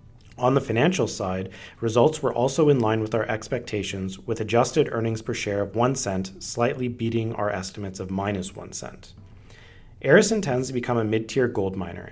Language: English